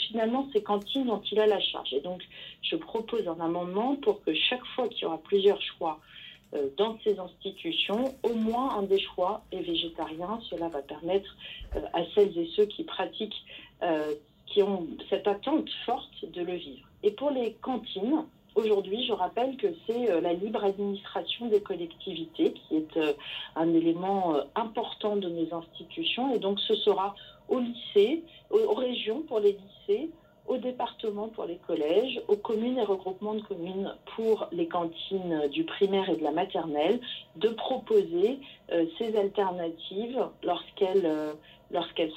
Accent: French